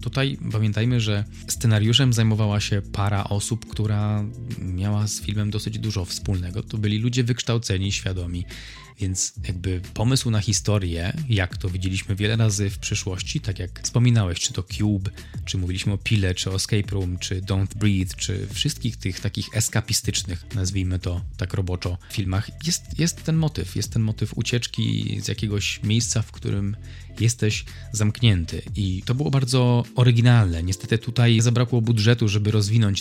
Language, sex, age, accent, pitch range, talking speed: Polish, male, 20-39, native, 95-115 Hz, 155 wpm